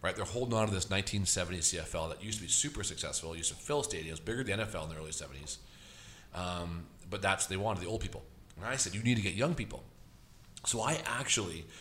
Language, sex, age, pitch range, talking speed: English, male, 40-59, 90-120 Hz, 235 wpm